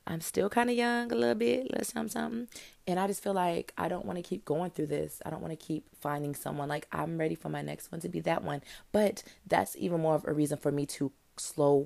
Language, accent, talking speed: English, American, 270 wpm